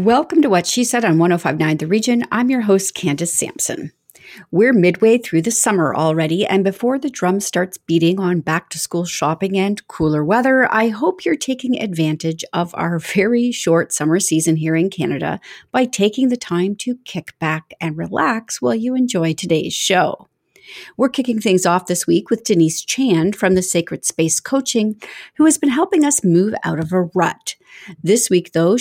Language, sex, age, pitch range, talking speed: English, female, 40-59, 170-240 Hz, 180 wpm